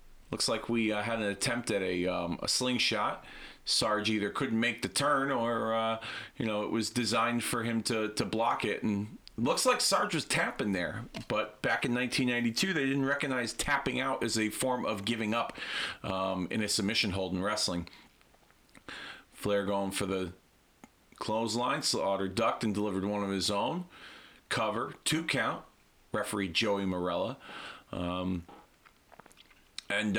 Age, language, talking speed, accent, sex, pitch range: 40-59, English, 165 wpm, American, male, 100-125 Hz